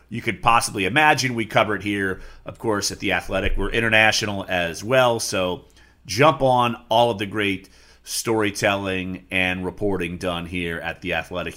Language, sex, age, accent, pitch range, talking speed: English, male, 40-59, American, 95-125 Hz, 165 wpm